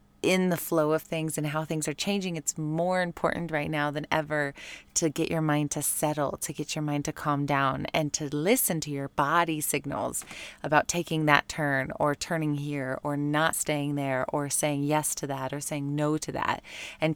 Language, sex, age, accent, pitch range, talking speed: English, female, 20-39, American, 145-160 Hz, 205 wpm